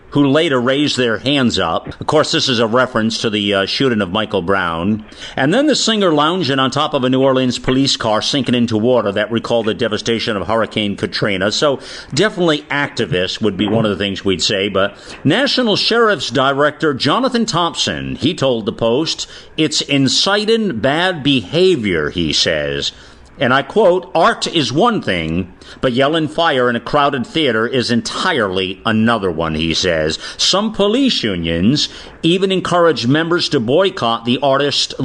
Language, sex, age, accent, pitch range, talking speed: English, male, 50-69, American, 115-185 Hz, 170 wpm